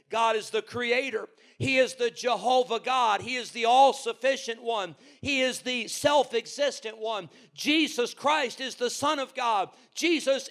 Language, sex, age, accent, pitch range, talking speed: English, male, 50-69, American, 215-280 Hz, 155 wpm